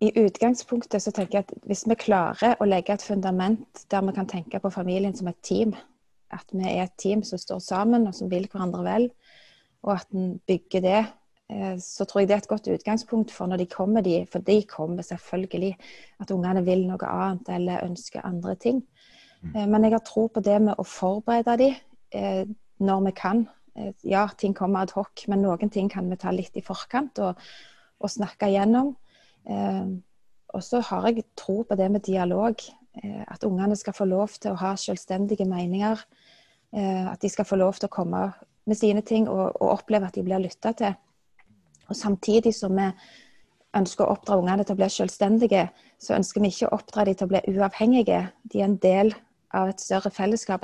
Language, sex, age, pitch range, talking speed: English, female, 20-39, 190-220 Hz, 190 wpm